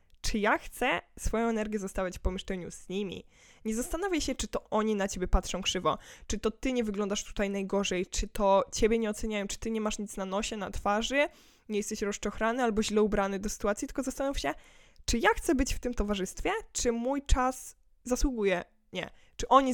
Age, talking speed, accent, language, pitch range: 10-29, 200 wpm, native, Polish, 200-235 Hz